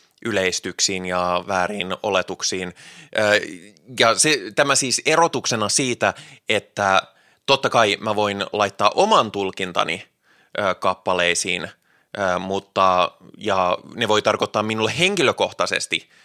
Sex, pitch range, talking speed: male, 95-110 Hz, 95 wpm